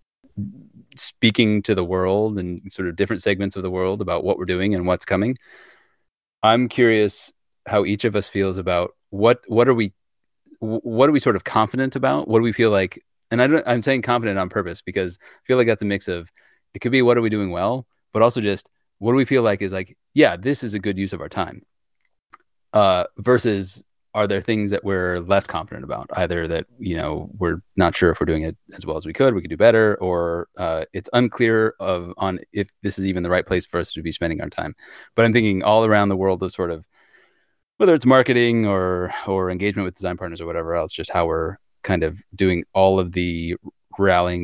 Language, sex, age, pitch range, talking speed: English, male, 30-49, 90-115 Hz, 225 wpm